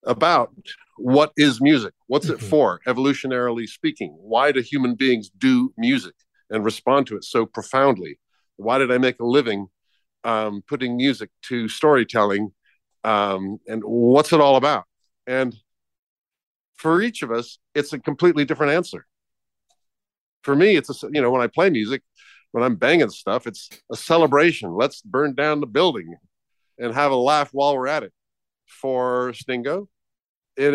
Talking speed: 160 wpm